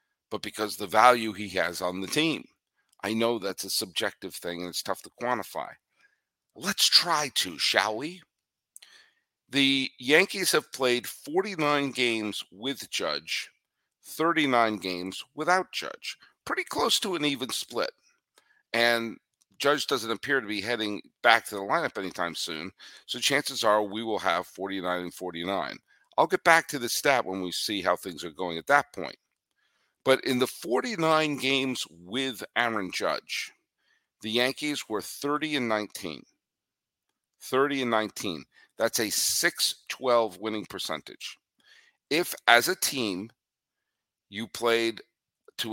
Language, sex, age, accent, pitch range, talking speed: English, male, 50-69, American, 100-130 Hz, 145 wpm